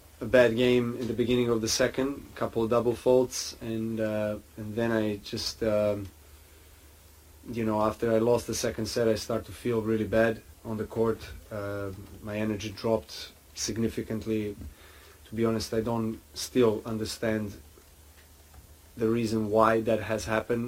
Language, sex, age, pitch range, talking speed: English, male, 30-49, 90-115 Hz, 160 wpm